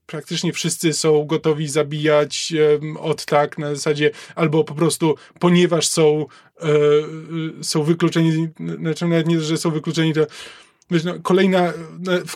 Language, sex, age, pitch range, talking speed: Polish, male, 20-39, 160-185 Hz, 140 wpm